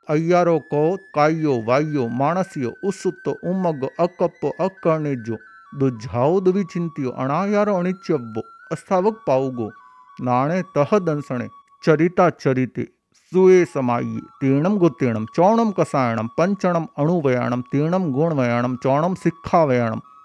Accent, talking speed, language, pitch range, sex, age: native, 85 wpm, Hindi, 130-175 Hz, male, 50-69